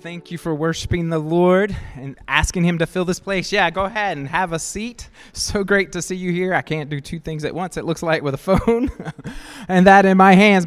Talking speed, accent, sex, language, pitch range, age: 245 wpm, American, male, English, 140-175 Hz, 20-39